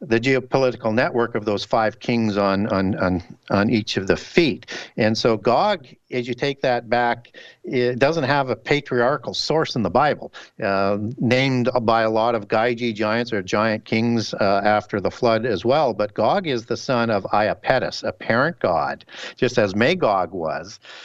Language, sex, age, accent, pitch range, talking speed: English, male, 50-69, American, 105-125 Hz, 180 wpm